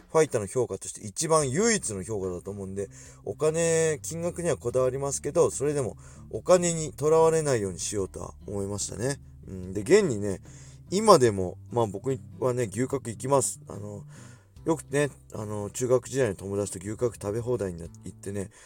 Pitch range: 105-165 Hz